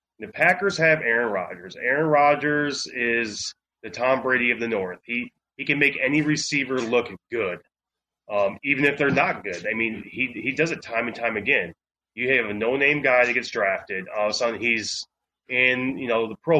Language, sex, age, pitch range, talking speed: English, male, 30-49, 115-140 Hz, 205 wpm